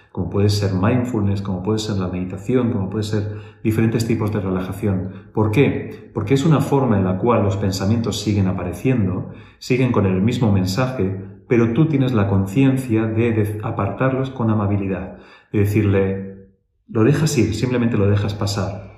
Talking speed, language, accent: 165 wpm, Spanish, Spanish